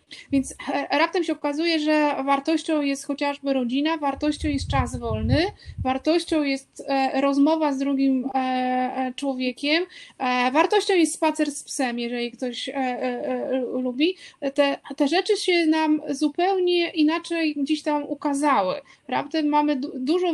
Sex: female